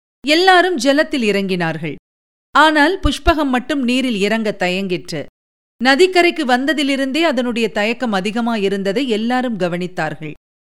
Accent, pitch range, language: native, 205-290 Hz, Tamil